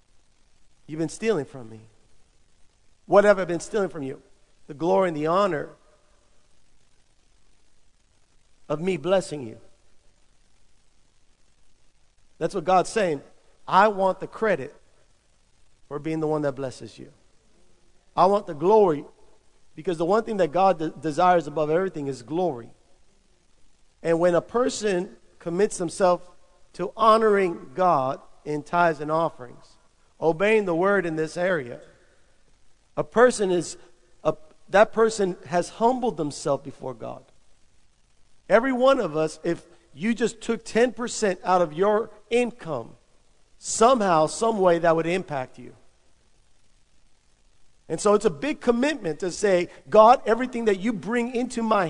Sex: male